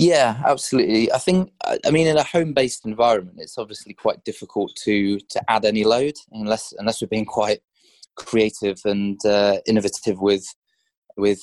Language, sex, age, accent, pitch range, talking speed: English, male, 20-39, British, 95-110 Hz, 160 wpm